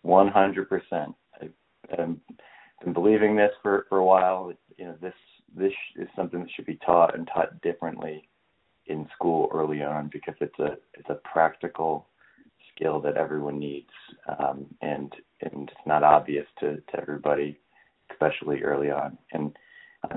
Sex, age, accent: male, 40-59, American